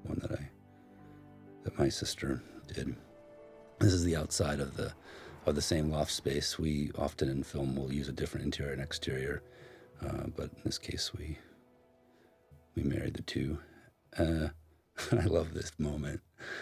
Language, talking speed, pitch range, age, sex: English, 165 wpm, 70-85 Hz, 50-69, male